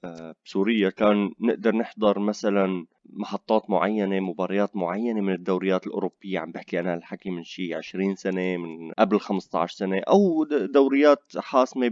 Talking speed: 135 wpm